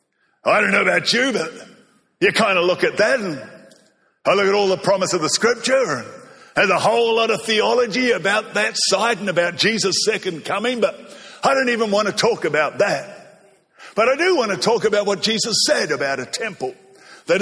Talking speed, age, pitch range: 205 wpm, 50-69, 180-265 Hz